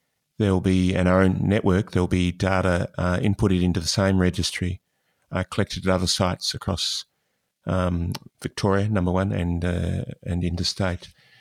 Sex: male